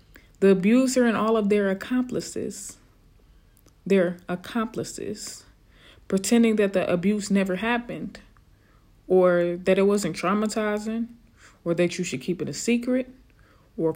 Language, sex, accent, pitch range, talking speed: English, female, American, 170-220 Hz, 125 wpm